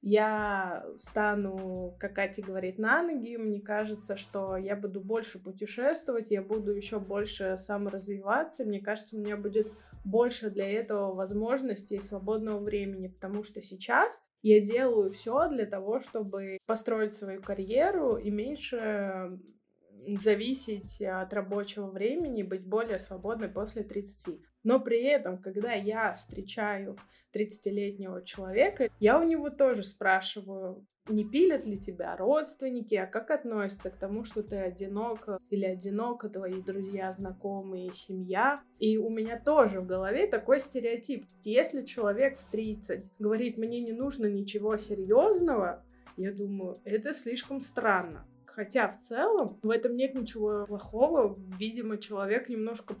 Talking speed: 135 wpm